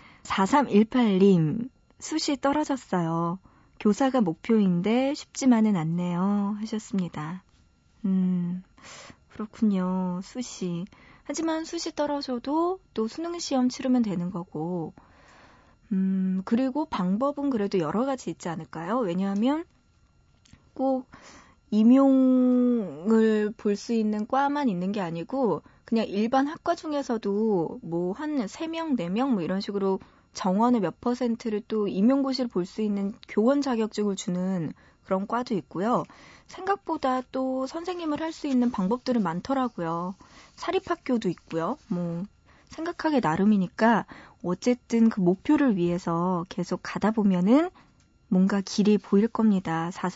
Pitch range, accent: 185-260 Hz, native